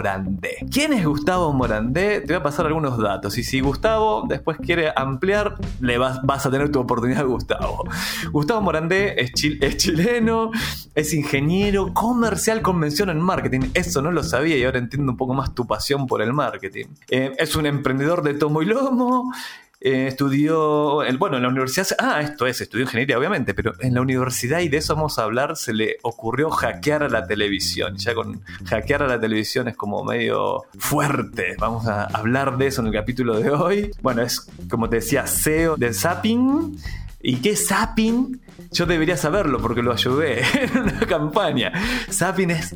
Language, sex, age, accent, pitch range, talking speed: Spanish, male, 20-39, Argentinian, 130-195 Hz, 185 wpm